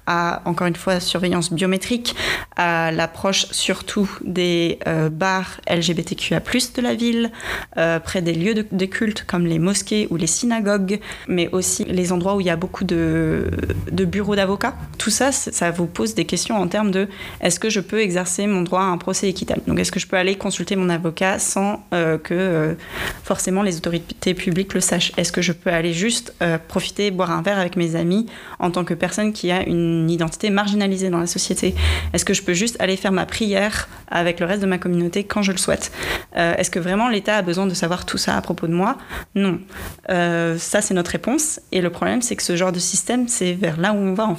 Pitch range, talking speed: 175-200 Hz, 225 wpm